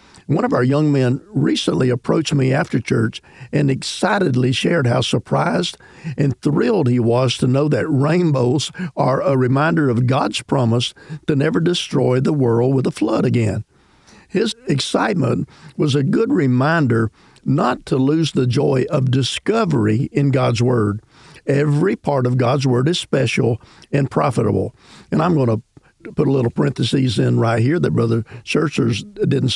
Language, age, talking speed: English, 50-69, 160 wpm